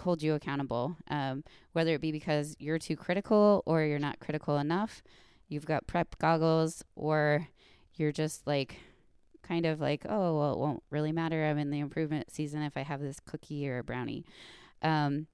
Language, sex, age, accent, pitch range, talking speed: English, female, 20-39, American, 140-160 Hz, 185 wpm